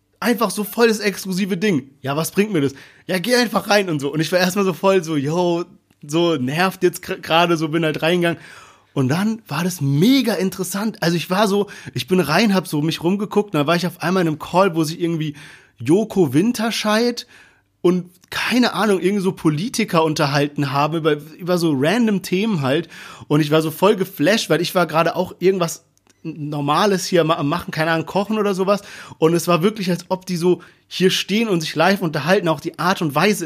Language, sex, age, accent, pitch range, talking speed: German, male, 30-49, German, 155-190 Hz, 210 wpm